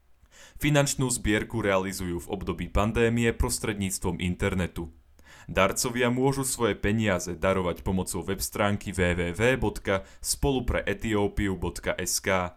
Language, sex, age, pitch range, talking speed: Slovak, male, 30-49, 90-115 Hz, 75 wpm